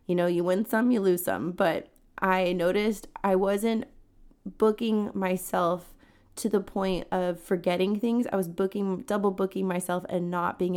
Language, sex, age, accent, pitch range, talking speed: English, female, 20-39, American, 180-200 Hz, 165 wpm